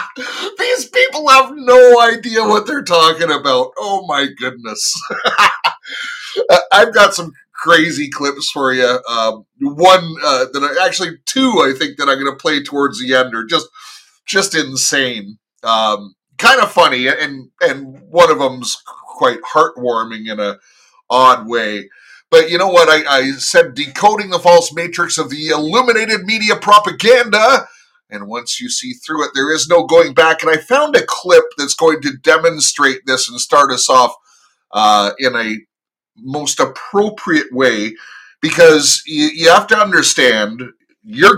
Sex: male